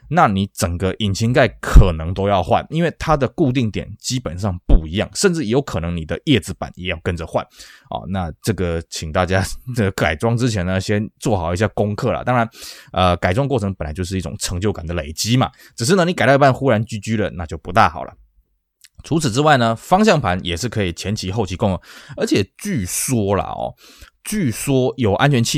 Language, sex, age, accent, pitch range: Chinese, male, 20-39, native, 90-120 Hz